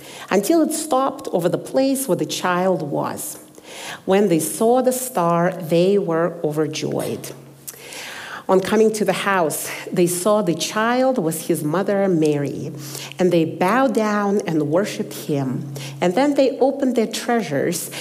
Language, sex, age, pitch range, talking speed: English, female, 50-69, 170-250 Hz, 145 wpm